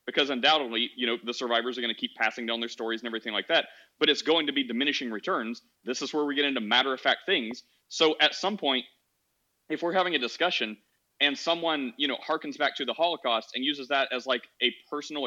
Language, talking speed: English, 230 wpm